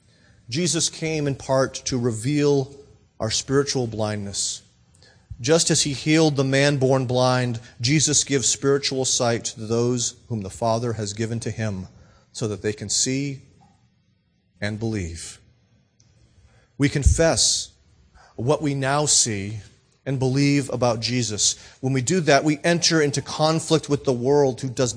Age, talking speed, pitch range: 40-59, 145 wpm, 105-140 Hz